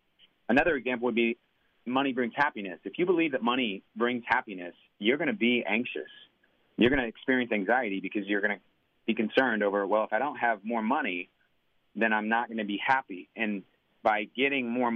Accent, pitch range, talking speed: American, 105-135 Hz, 195 wpm